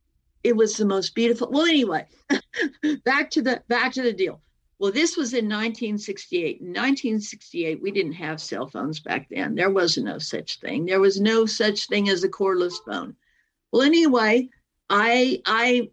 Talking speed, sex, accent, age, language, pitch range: 175 wpm, female, American, 50-69, English, 190-245 Hz